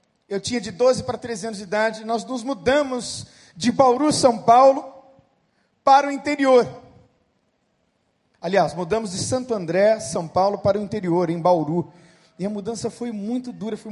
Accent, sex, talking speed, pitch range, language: Brazilian, male, 165 wpm, 155-240 Hz, Portuguese